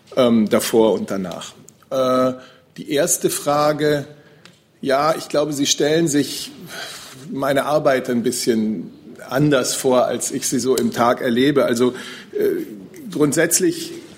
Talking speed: 115 wpm